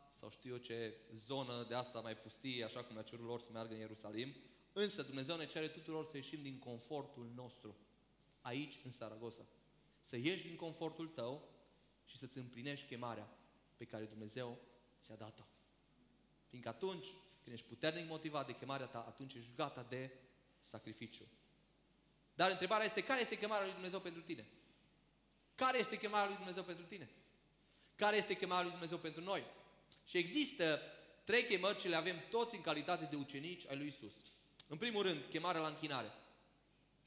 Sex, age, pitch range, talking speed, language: male, 20-39, 125-180 Hz, 175 wpm, Romanian